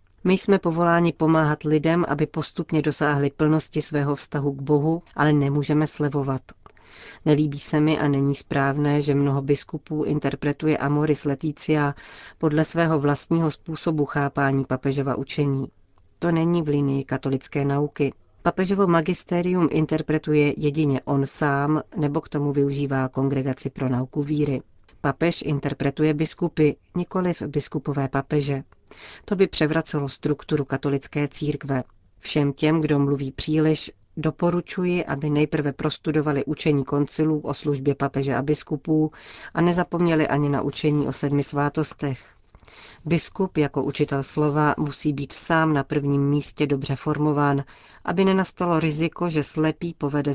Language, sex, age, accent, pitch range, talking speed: Czech, female, 40-59, native, 140-155 Hz, 130 wpm